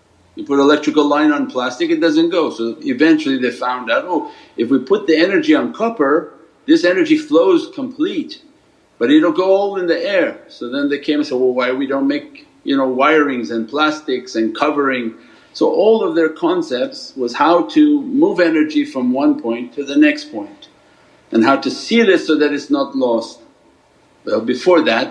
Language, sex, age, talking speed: English, male, 50-69, 195 wpm